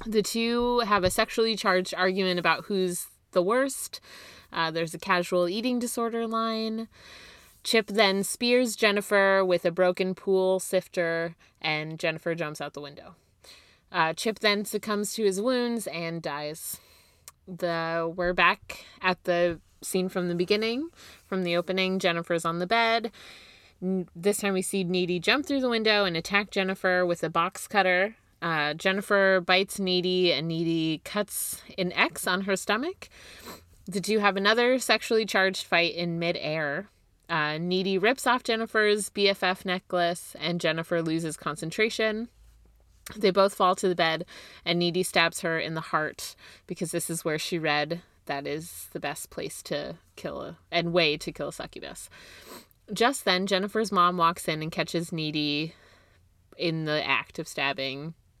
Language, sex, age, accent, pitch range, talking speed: English, female, 20-39, American, 165-205 Hz, 155 wpm